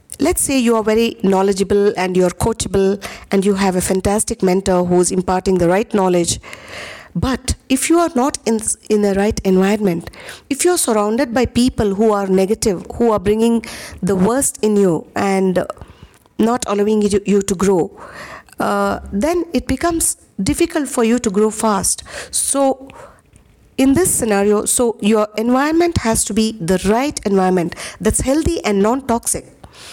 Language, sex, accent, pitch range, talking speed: English, female, Indian, 200-275 Hz, 160 wpm